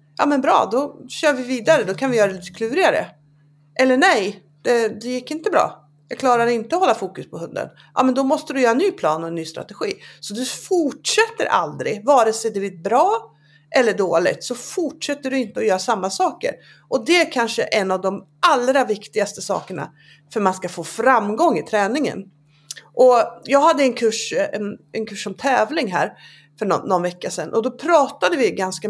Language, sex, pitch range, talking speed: Swedish, female, 170-265 Hz, 205 wpm